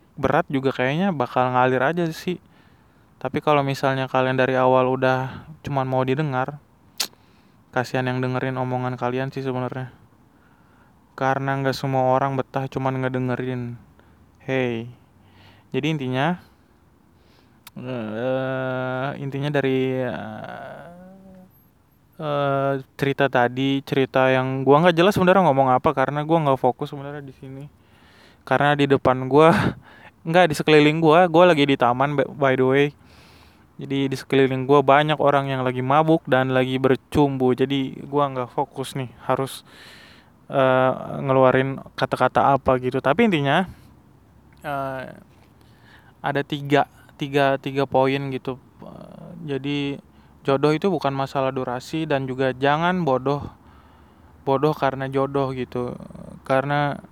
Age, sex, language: 20-39, male, Indonesian